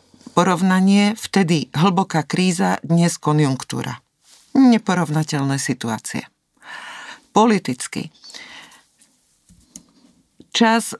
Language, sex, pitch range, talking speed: Slovak, female, 150-195 Hz, 55 wpm